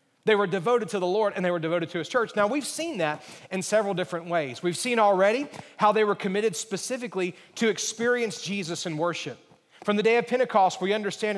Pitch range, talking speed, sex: 185-230 Hz, 215 wpm, male